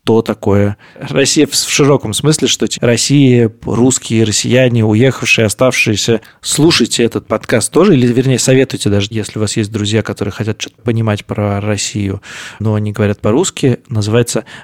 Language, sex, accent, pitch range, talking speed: Russian, male, native, 110-130 Hz, 150 wpm